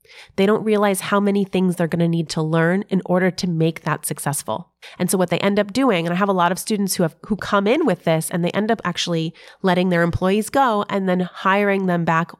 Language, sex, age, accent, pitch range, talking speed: English, female, 30-49, American, 170-210 Hz, 255 wpm